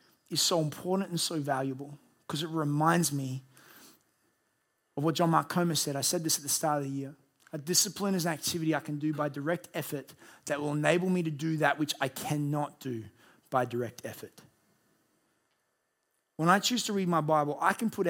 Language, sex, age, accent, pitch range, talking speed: English, male, 30-49, Australian, 140-180 Hz, 200 wpm